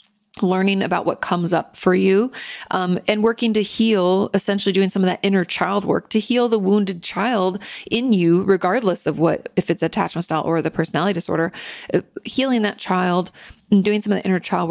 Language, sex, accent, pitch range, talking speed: English, female, American, 175-205 Hz, 195 wpm